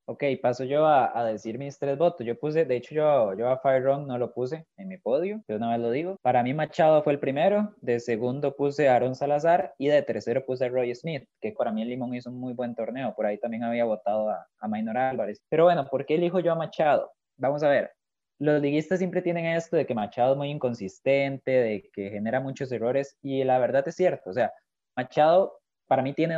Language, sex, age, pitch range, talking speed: Spanish, male, 20-39, 120-155 Hz, 240 wpm